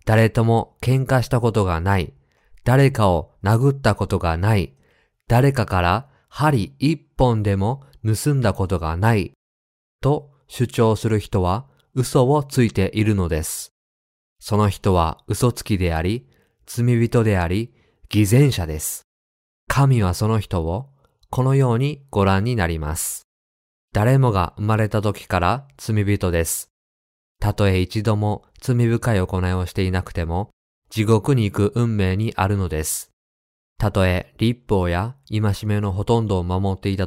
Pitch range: 90-115 Hz